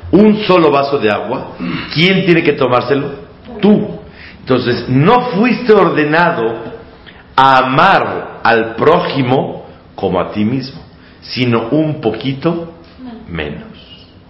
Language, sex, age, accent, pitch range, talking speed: Spanish, male, 50-69, Mexican, 90-145 Hz, 110 wpm